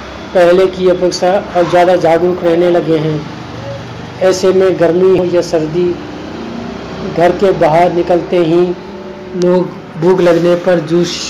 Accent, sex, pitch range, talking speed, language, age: native, male, 170-185 Hz, 135 wpm, Hindi, 40-59